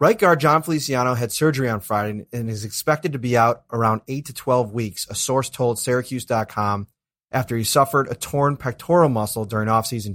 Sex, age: male, 30-49